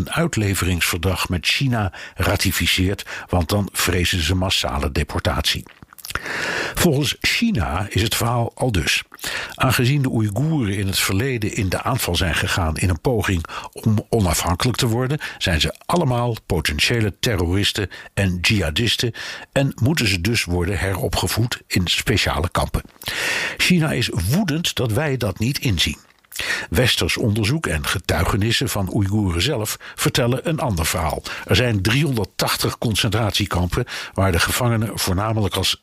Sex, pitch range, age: male, 90-120 Hz, 60-79